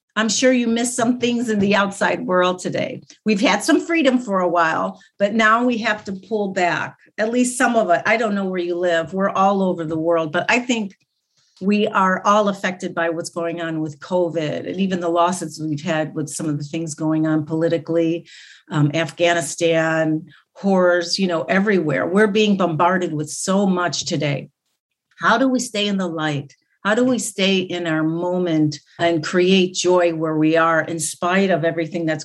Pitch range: 165-210 Hz